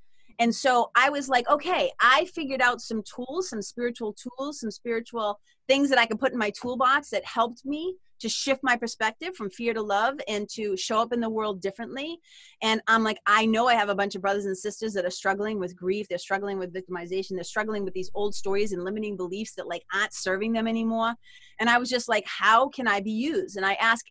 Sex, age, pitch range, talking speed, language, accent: female, 30-49, 190-235 Hz, 230 wpm, English, American